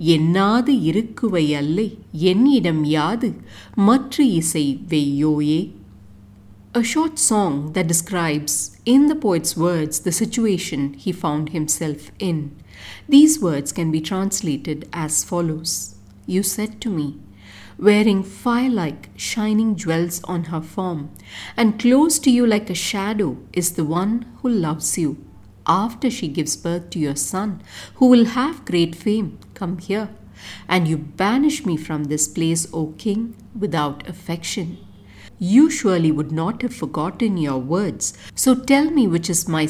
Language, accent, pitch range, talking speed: English, Indian, 155-220 Hz, 130 wpm